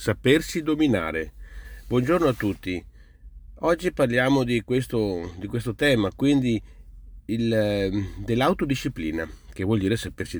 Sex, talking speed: male, 100 wpm